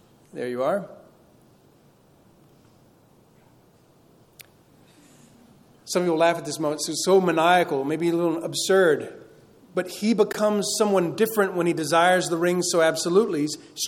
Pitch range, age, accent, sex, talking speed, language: 165-200 Hz, 40-59, American, male, 135 wpm, English